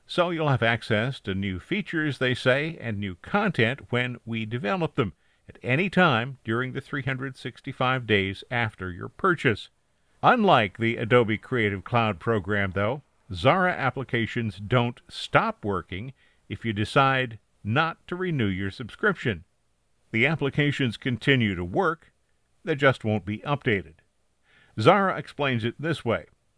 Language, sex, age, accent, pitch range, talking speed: English, male, 50-69, American, 105-135 Hz, 140 wpm